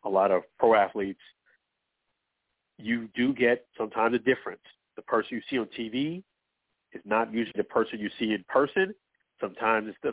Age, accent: 50-69, American